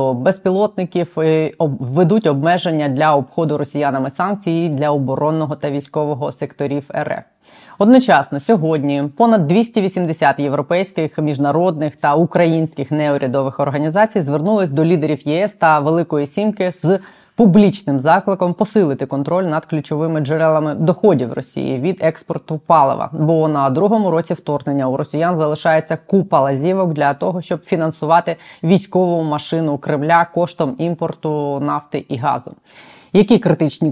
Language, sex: Ukrainian, female